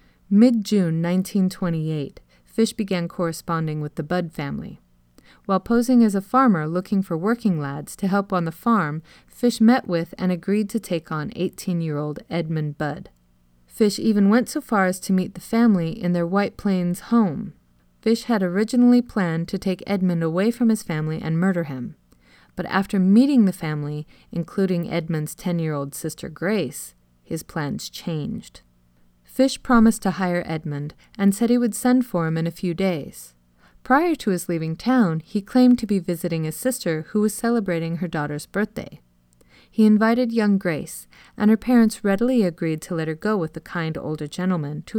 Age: 30-49